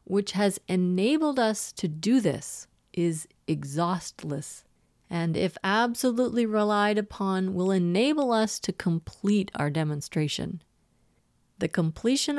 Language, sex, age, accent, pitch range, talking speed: English, female, 40-59, American, 165-215 Hz, 110 wpm